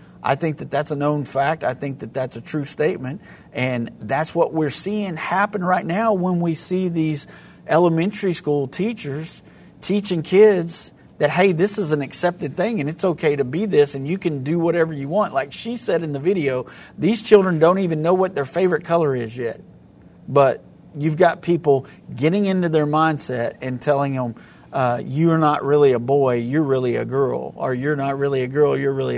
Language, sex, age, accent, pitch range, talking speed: English, male, 50-69, American, 135-170 Hz, 200 wpm